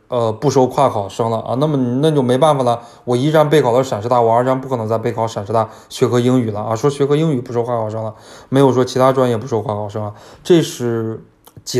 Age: 20-39